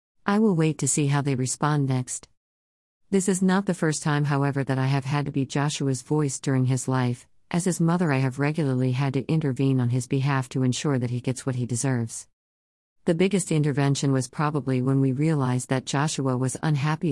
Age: 50-69